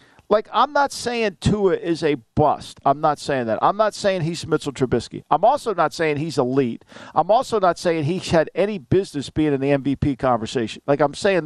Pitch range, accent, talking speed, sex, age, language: 145-200 Hz, American, 210 wpm, male, 50-69, English